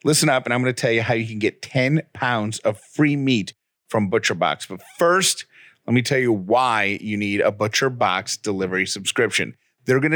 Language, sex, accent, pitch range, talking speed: English, male, American, 105-140 Hz, 200 wpm